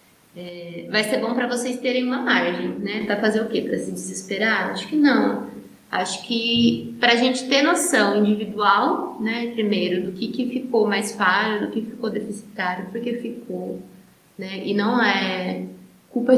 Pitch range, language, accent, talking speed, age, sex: 195-230 Hz, Portuguese, Brazilian, 170 wpm, 20-39, female